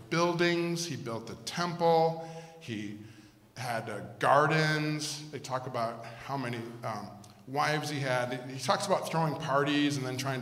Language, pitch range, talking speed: English, 125-160 Hz, 150 wpm